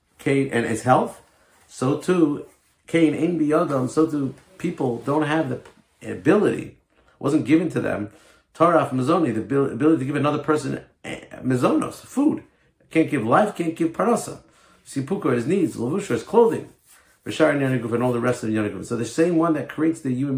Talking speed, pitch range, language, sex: 170 wpm, 110-150 Hz, English, male